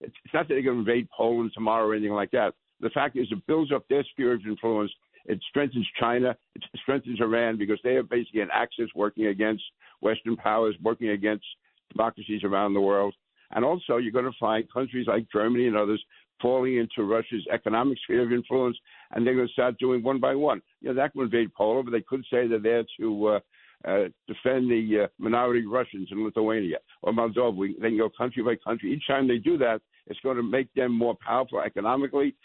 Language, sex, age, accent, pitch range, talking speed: English, male, 60-79, American, 110-135 Hz, 215 wpm